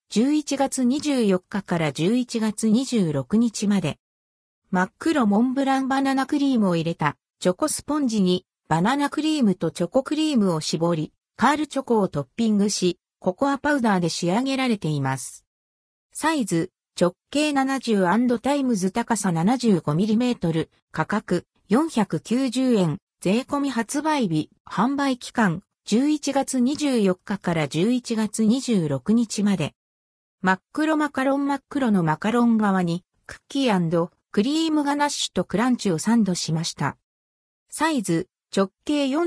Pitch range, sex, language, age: 180-265 Hz, female, Japanese, 50-69